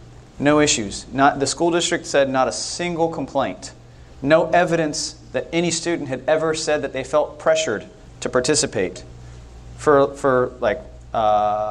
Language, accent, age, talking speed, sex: English, American, 30-49, 150 wpm, male